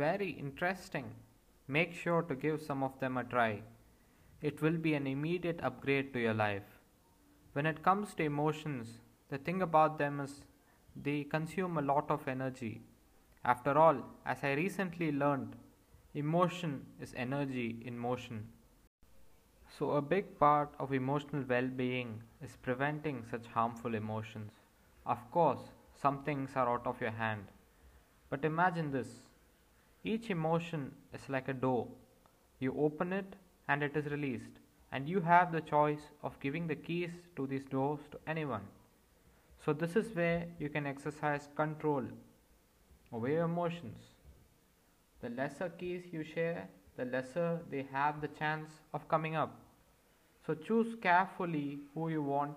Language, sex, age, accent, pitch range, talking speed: English, male, 20-39, Indian, 130-160 Hz, 145 wpm